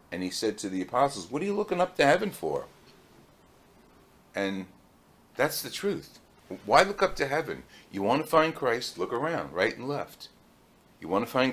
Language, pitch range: English, 105-150 Hz